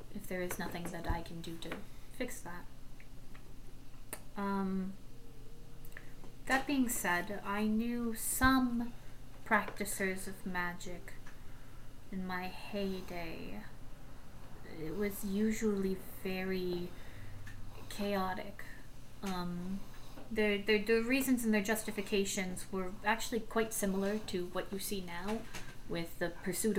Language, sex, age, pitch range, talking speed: English, female, 20-39, 170-210 Hz, 110 wpm